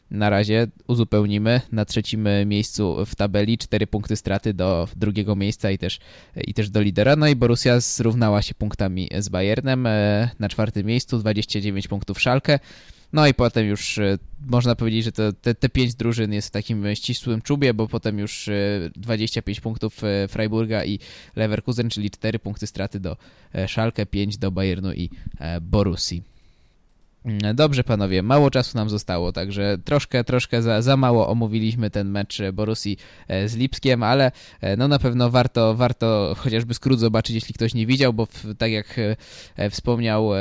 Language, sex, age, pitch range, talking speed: Polish, male, 20-39, 100-120 Hz, 155 wpm